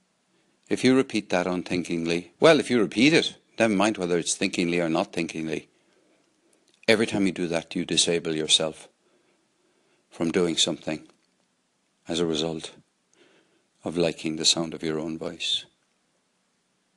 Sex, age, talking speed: male, 60-79, 140 wpm